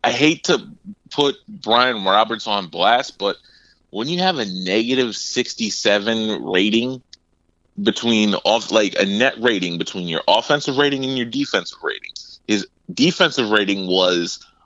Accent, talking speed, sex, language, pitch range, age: American, 145 wpm, male, English, 95-130 Hz, 30-49